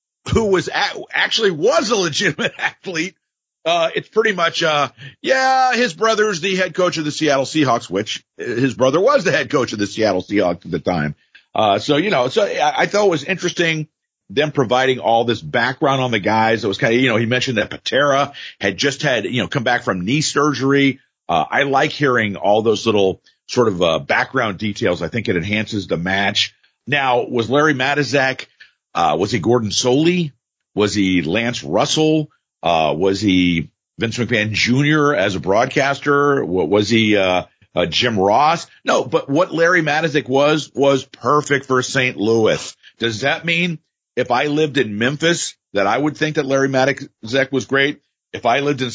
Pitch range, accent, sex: 115-150 Hz, American, male